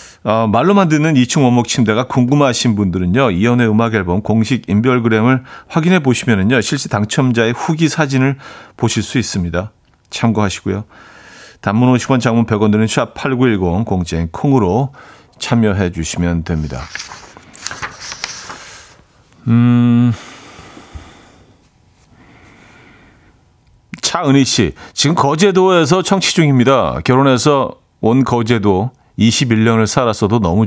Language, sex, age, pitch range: Korean, male, 40-59, 100-130 Hz